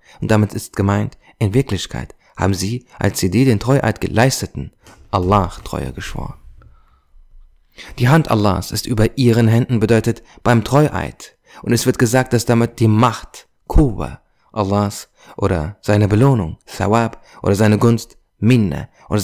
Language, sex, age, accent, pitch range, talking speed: German, male, 30-49, German, 95-115 Hz, 145 wpm